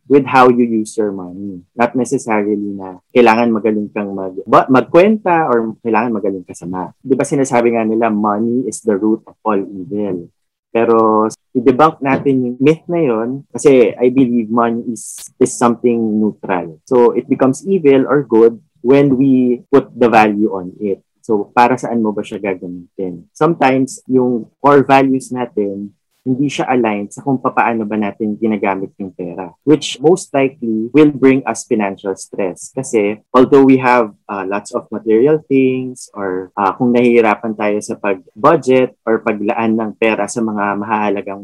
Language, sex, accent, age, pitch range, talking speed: English, male, Filipino, 20-39, 105-130 Hz, 160 wpm